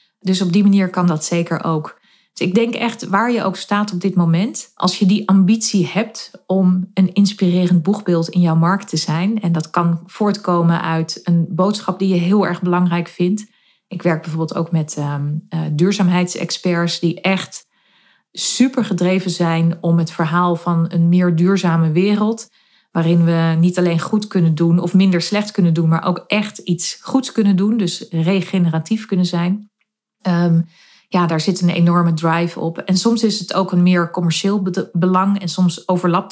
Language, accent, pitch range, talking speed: Dutch, Dutch, 170-200 Hz, 180 wpm